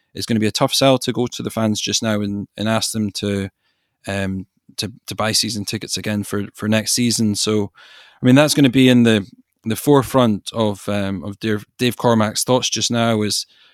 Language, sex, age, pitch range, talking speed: English, male, 20-39, 100-110 Hz, 225 wpm